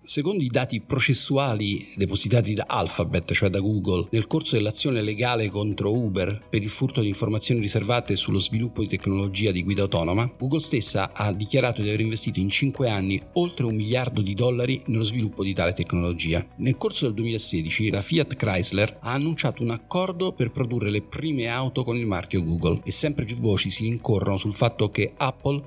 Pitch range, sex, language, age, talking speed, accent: 100-125 Hz, male, Italian, 50-69, 185 wpm, native